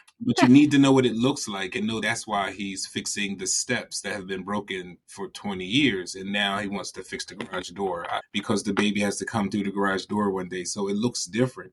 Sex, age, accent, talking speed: male, 30-49, American, 250 wpm